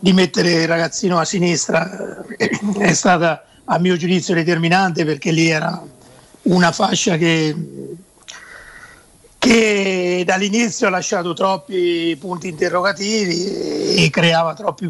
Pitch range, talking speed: 175-210 Hz, 115 wpm